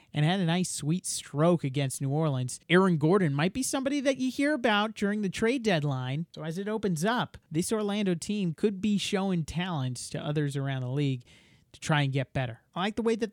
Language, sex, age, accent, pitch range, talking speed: English, male, 30-49, American, 140-185 Hz, 220 wpm